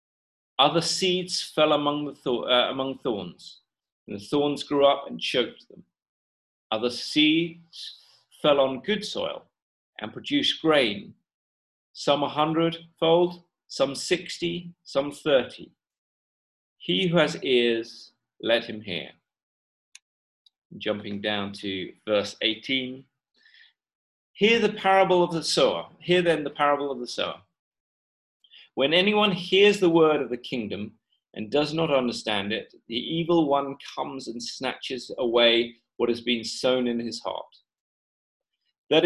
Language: English